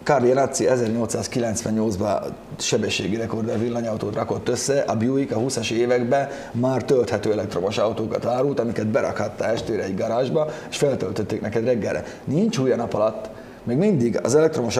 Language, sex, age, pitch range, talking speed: English, male, 30-49, 115-150 Hz, 140 wpm